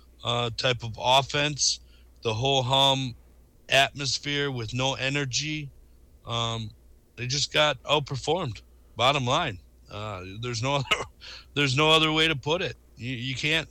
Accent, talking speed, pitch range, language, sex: American, 140 wpm, 100-130 Hz, English, male